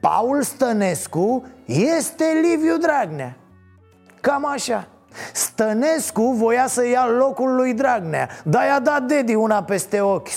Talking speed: 120 wpm